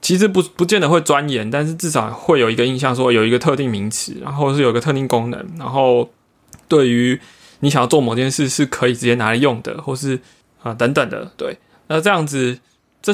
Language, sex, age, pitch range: Chinese, male, 20-39, 120-155 Hz